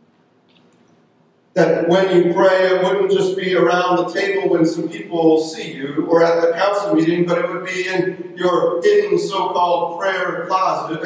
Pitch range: 175-220 Hz